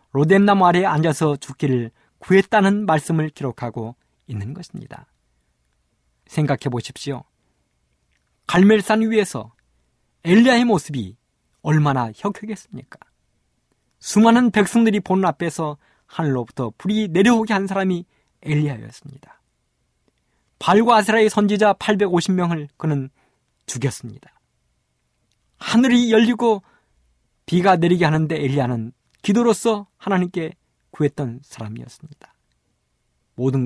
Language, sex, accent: Korean, male, native